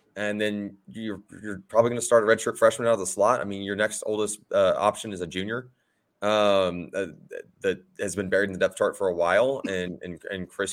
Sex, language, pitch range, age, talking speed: male, English, 100-130 Hz, 30-49, 235 wpm